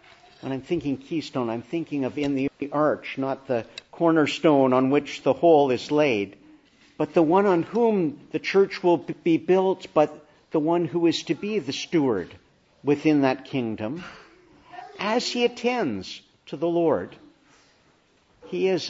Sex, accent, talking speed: male, American, 155 wpm